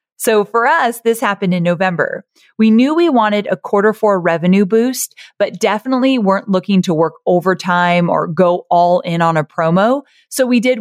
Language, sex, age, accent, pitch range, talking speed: English, female, 30-49, American, 175-235 Hz, 185 wpm